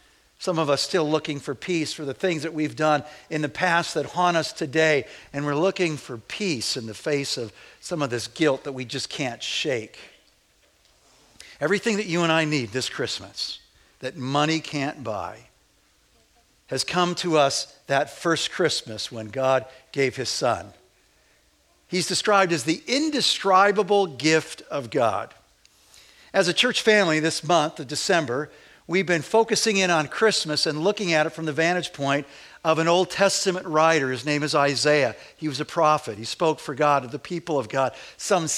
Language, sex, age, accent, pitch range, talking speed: English, male, 50-69, American, 145-180 Hz, 180 wpm